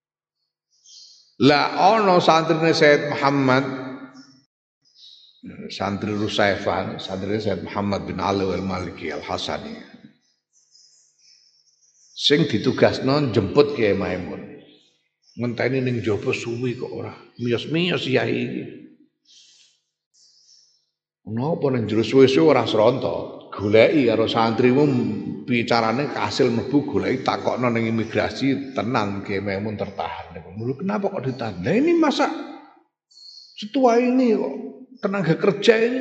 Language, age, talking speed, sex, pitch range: Indonesian, 50-69, 100 wpm, male, 115-175 Hz